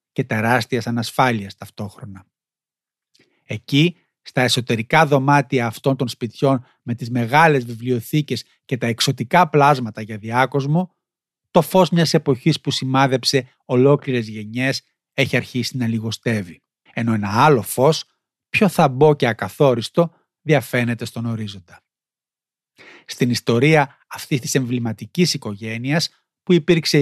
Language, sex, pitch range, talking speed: Greek, male, 120-150 Hz, 115 wpm